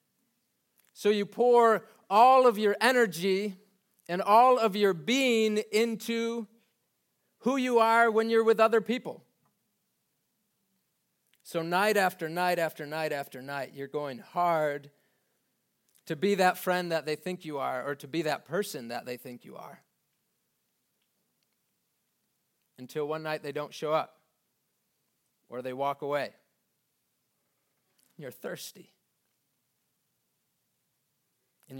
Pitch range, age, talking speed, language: 150-215 Hz, 30-49, 125 wpm, English